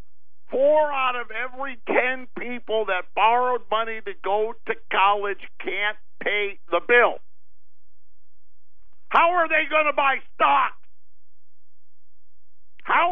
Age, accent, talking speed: 50-69, American, 115 wpm